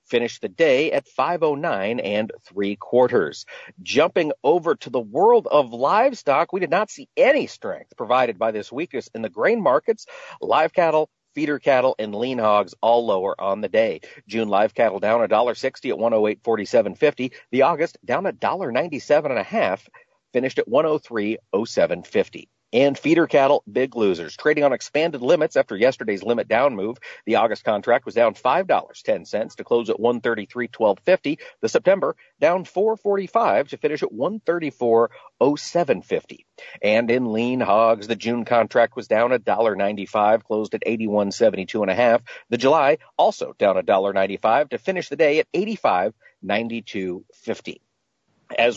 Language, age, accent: English, 50-69, American